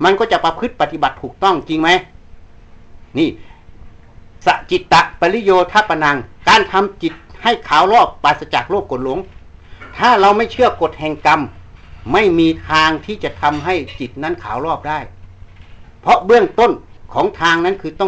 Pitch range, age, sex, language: 115-185 Hz, 60-79, male, Thai